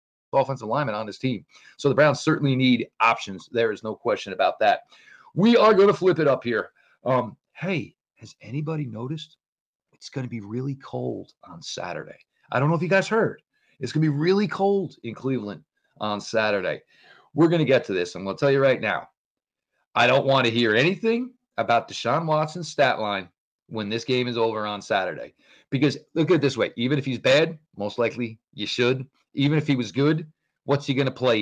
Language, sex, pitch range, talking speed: English, male, 115-155 Hz, 210 wpm